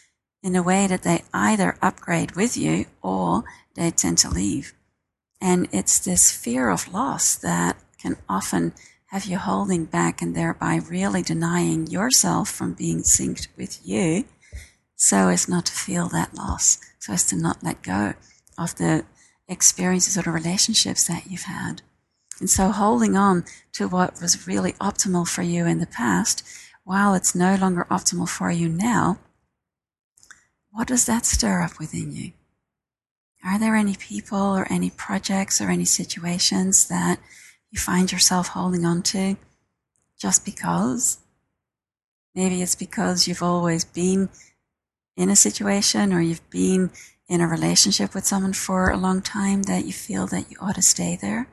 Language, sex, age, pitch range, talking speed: English, female, 40-59, 165-195 Hz, 160 wpm